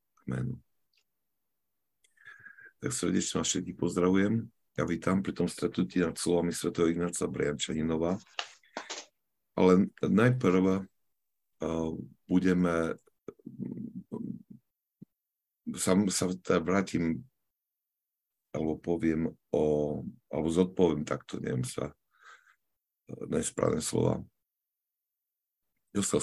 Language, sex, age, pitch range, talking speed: Slovak, male, 50-69, 80-95 Hz, 80 wpm